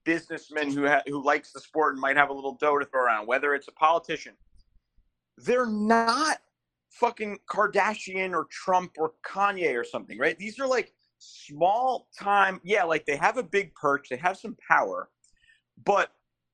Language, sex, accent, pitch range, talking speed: English, male, American, 135-200 Hz, 170 wpm